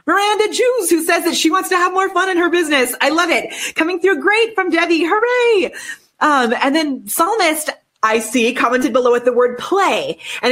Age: 30-49